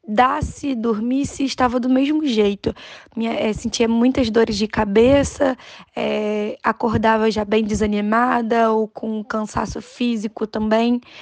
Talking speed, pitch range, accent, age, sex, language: 125 wpm, 220-275 Hz, Brazilian, 10-29, female, Portuguese